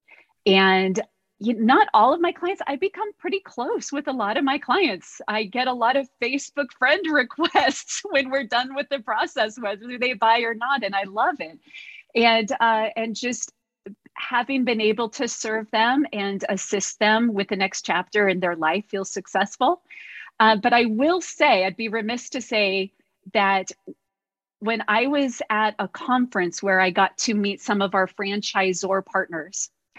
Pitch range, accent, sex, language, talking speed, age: 200-275 Hz, American, female, English, 175 wpm, 40-59